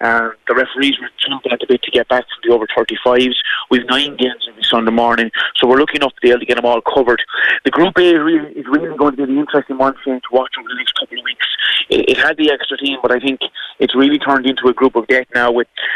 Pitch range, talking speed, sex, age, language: 125-140 Hz, 270 wpm, male, 30-49, English